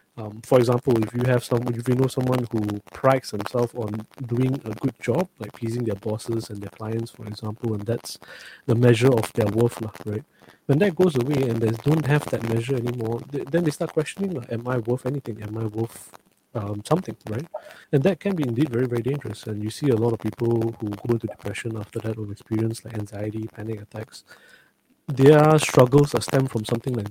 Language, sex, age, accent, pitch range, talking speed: English, male, 20-39, Malaysian, 110-130 Hz, 215 wpm